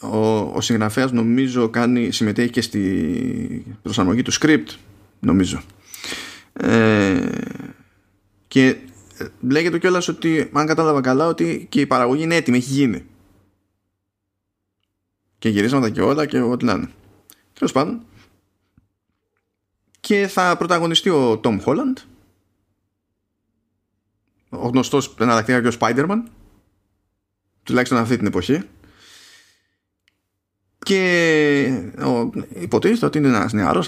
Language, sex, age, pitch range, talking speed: Greek, male, 20-39, 100-145 Hz, 105 wpm